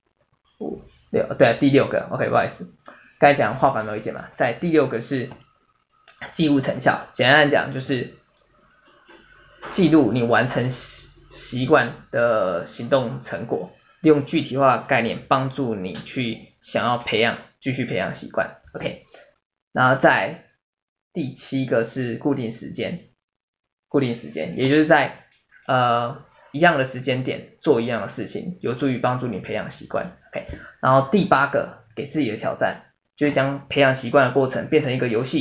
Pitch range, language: 125-145 Hz, Chinese